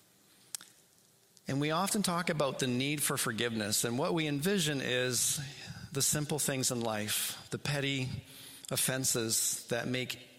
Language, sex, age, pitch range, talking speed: English, male, 40-59, 120-150 Hz, 140 wpm